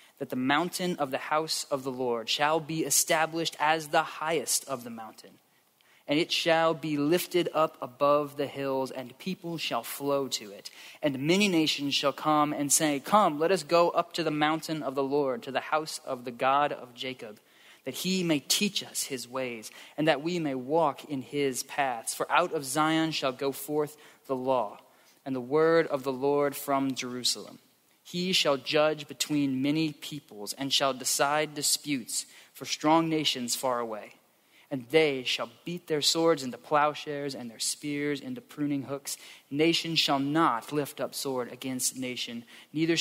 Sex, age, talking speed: male, 20-39, 180 wpm